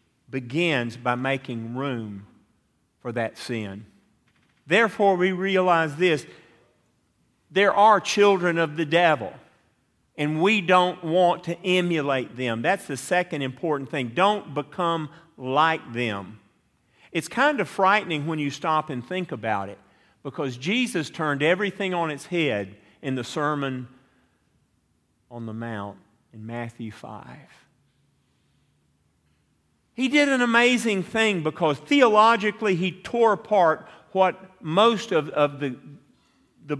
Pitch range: 130-190 Hz